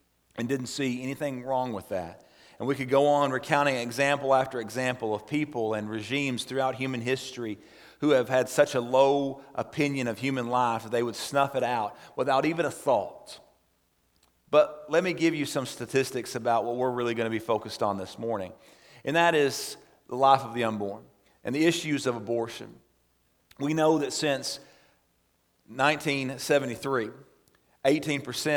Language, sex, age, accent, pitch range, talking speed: English, male, 40-59, American, 115-140 Hz, 165 wpm